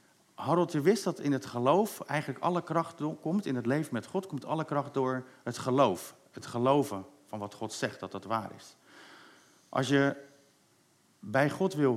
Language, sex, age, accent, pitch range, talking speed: Dutch, male, 50-69, Dutch, 125-160 Hz, 185 wpm